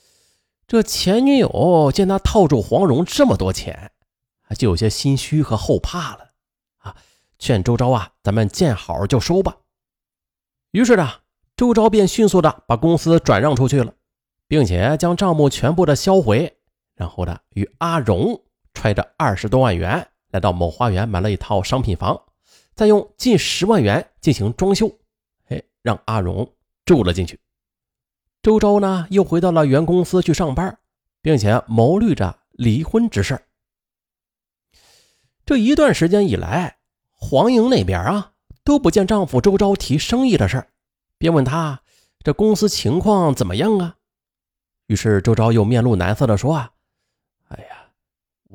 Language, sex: Chinese, male